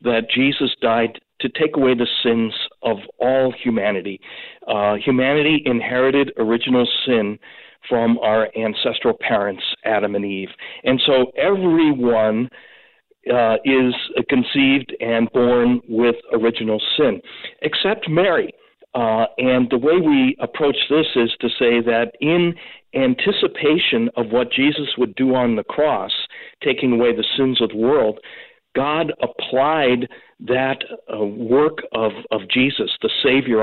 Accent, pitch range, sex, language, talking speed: American, 115-145 Hz, male, English, 130 wpm